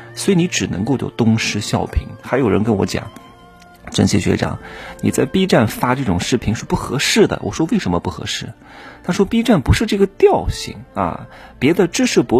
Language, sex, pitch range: Chinese, male, 105-155 Hz